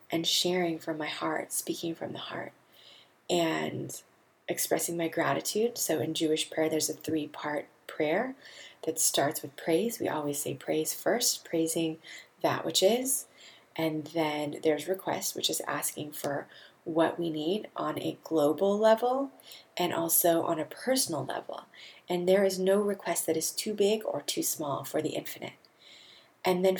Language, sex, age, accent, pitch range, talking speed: English, female, 20-39, American, 165-210 Hz, 160 wpm